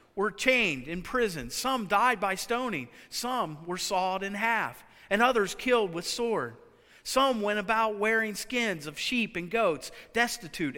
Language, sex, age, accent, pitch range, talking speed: English, male, 40-59, American, 170-240 Hz, 155 wpm